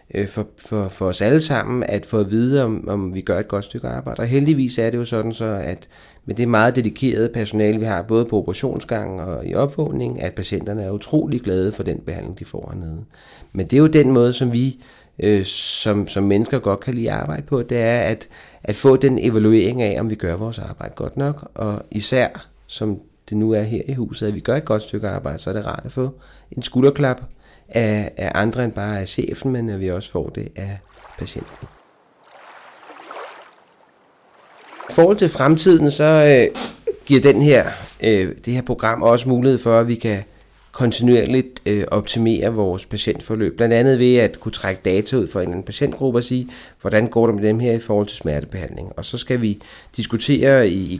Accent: native